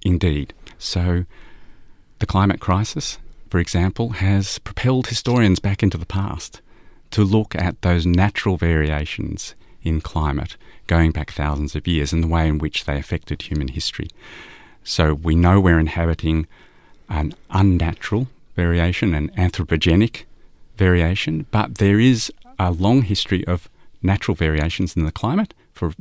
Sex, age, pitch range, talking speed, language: male, 40-59, 80-105 Hz, 140 wpm, English